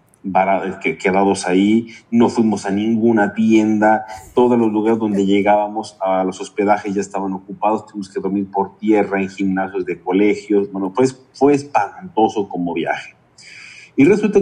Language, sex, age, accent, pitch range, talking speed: Spanish, male, 40-59, Mexican, 95-120 Hz, 145 wpm